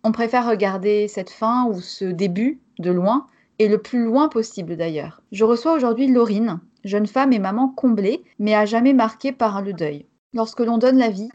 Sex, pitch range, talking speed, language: female, 200-250 Hz, 195 wpm, French